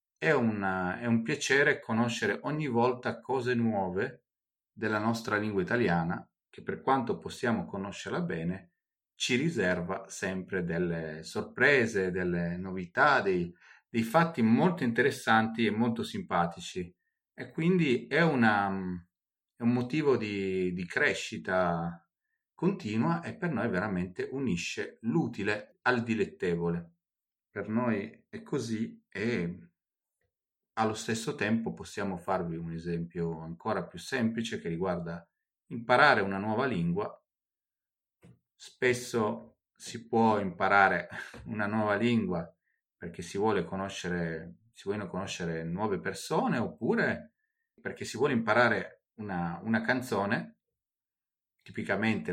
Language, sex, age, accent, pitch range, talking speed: Italian, male, 40-59, native, 85-115 Hz, 115 wpm